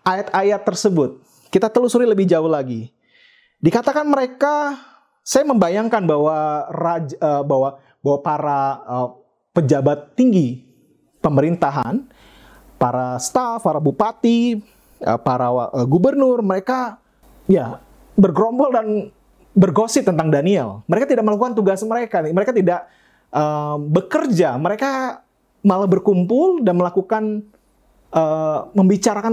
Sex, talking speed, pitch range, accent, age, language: male, 105 wpm, 145-225 Hz, Indonesian, 30-49, English